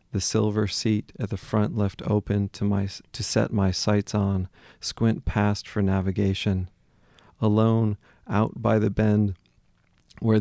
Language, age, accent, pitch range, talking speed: English, 40-59, American, 95-110 Hz, 145 wpm